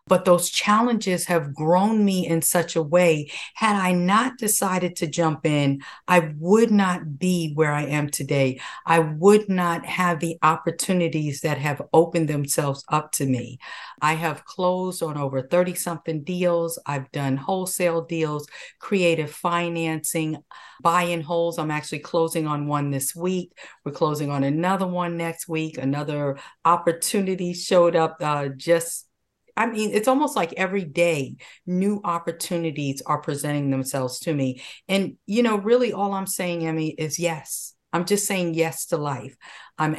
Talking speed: 155 wpm